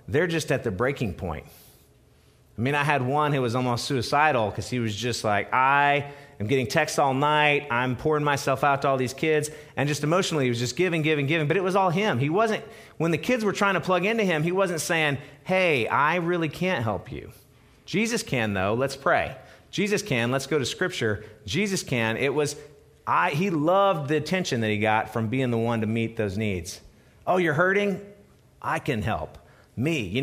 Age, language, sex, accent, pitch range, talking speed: 40-59, English, male, American, 120-160 Hz, 210 wpm